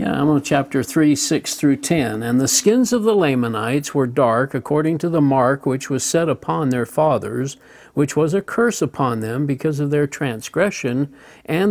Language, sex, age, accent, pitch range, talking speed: English, male, 60-79, American, 125-165 Hz, 190 wpm